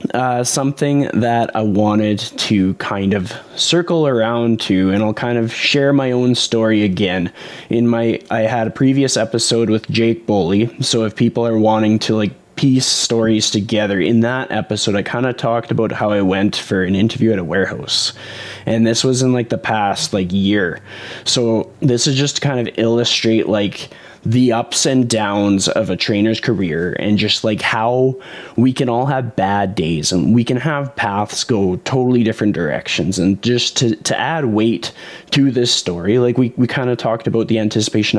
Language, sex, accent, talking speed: English, male, American, 190 wpm